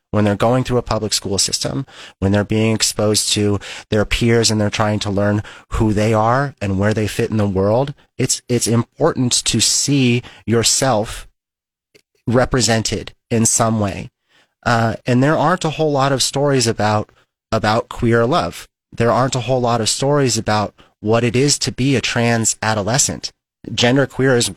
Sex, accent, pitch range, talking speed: male, American, 105-125 Hz, 175 wpm